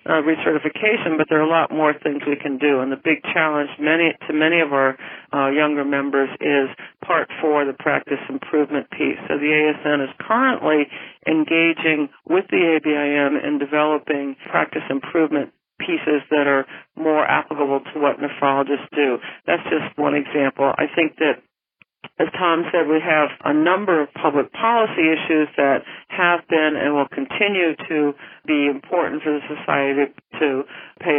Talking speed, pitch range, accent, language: 165 wpm, 140-160 Hz, American, English